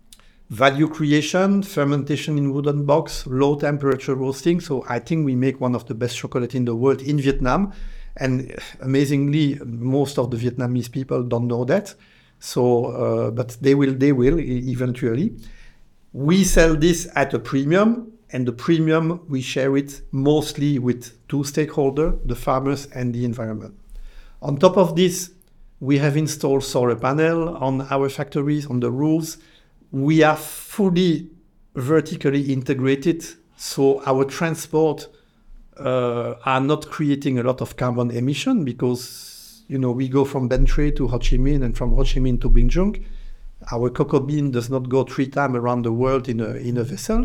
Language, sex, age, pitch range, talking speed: Vietnamese, male, 50-69, 125-155 Hz, 165 wpm